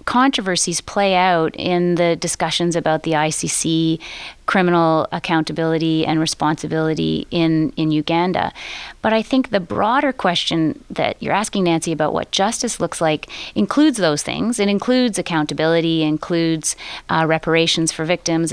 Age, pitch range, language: 30-49, 160-185 Hz, English